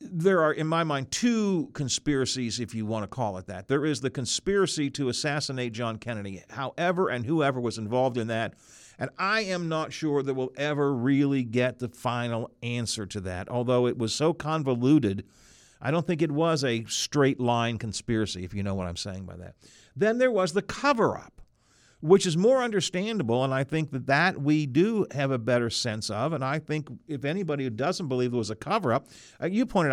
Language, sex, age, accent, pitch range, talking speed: English, male, 50-69, American, 120-175 Hz, 200 wpm